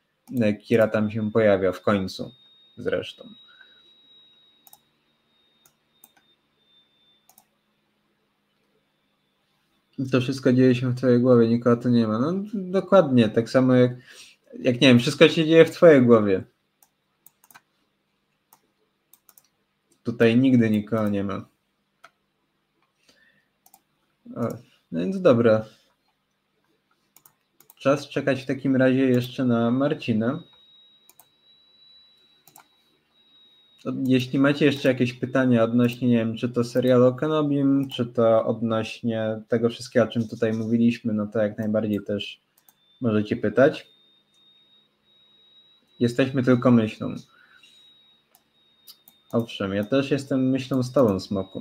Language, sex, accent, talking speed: Polish, male, native, 100 wpm